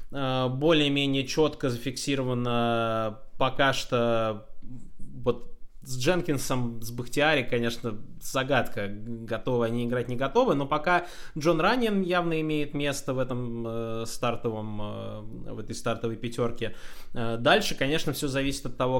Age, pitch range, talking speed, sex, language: 20-39, 115-150 Hz, 125 wpm, male, Russian